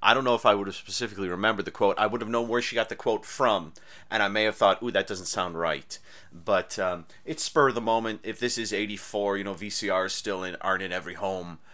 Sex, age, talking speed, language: male, 30-49, 255 wpm, English